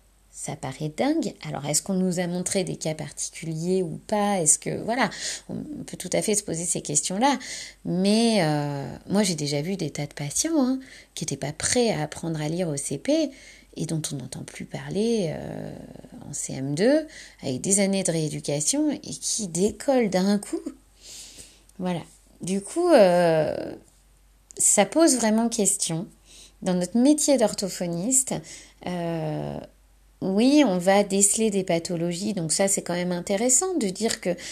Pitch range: 180-245 Hz